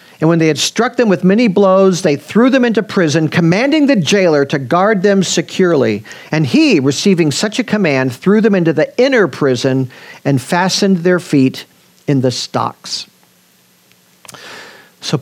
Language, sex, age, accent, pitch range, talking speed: English, male, 50-69, American, 130-175 Hz, 160 wpm